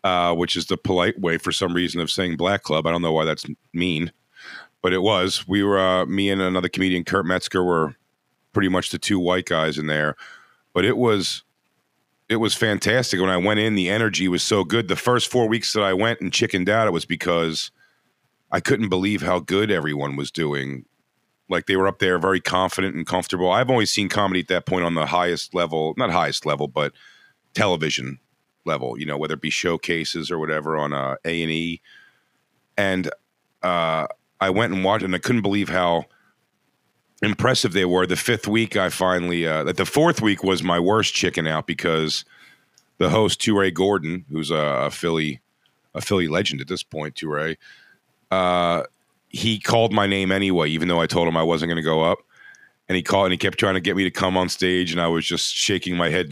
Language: English